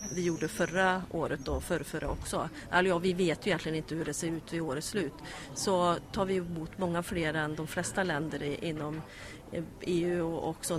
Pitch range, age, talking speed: 155-185 Hz, 30-49, 205 wpm